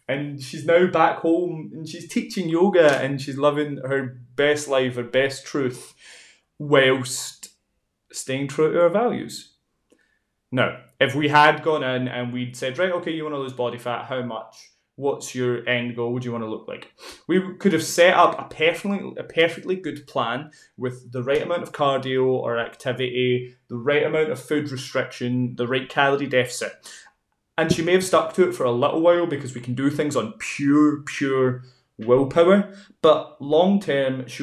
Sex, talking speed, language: male, 185 wpm, English